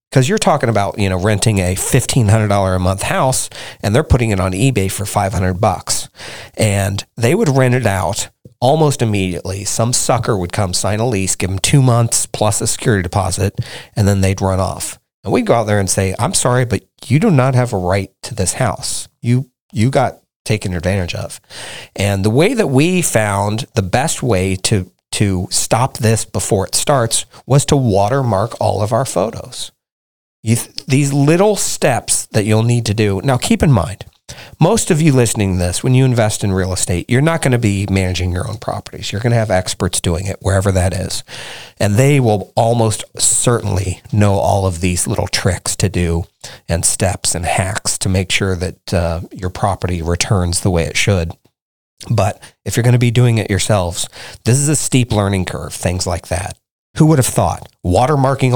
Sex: male